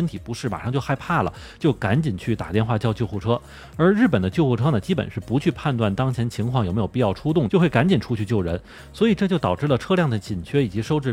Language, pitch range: Chinese, 105-140 Hz